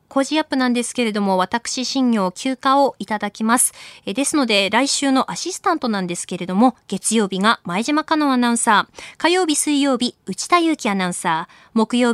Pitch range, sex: 190-280 Hz, female